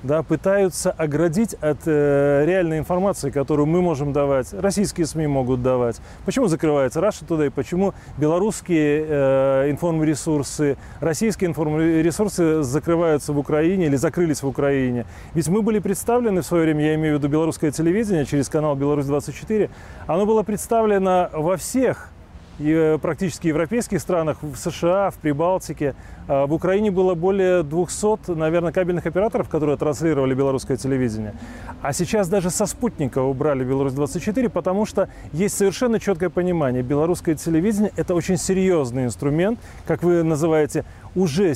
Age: 30-49